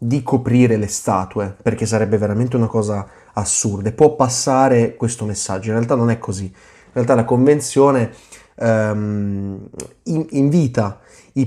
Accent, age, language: native, 20-39, Italian